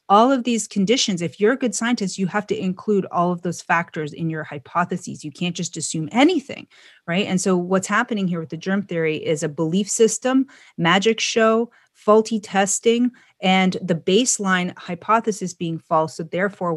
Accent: American